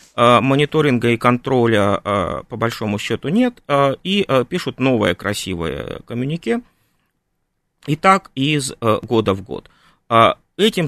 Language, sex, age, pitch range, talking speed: Russian, male, 30-49, 115-155 Hz, 105 wpm